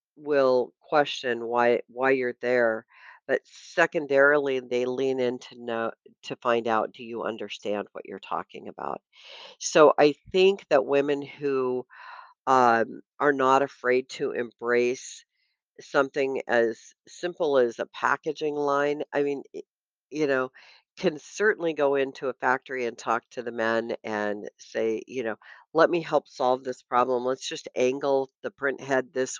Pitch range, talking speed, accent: 120-145 Hz, 150 wpm, American